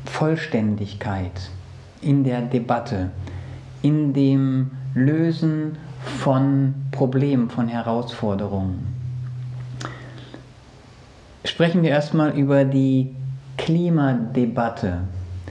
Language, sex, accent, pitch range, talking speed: German, male, German, 115-150 Hz, 65 wpm